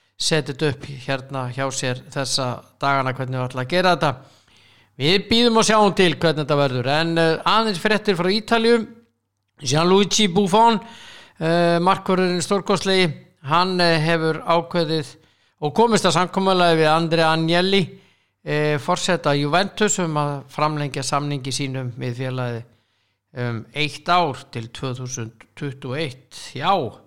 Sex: male